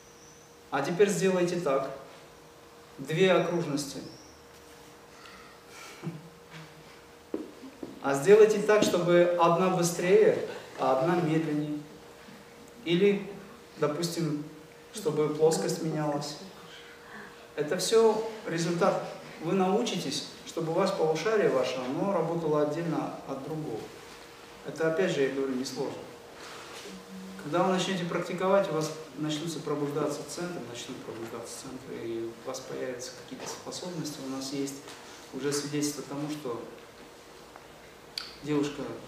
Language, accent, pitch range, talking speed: Russian, native, 140-170 Hz, 105 wpm